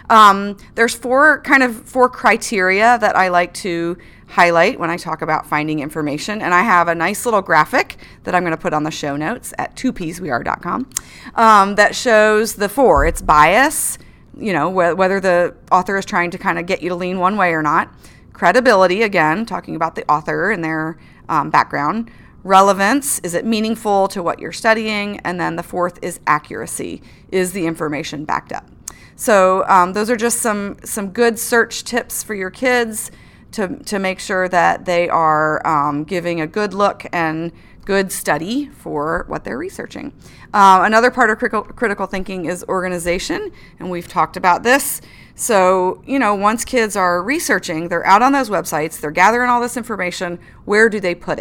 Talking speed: 180 wpm